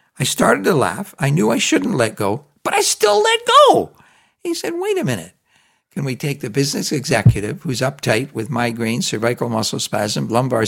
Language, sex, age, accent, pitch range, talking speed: English, male, 60-79, American, 105-135 Hz, 190 wpm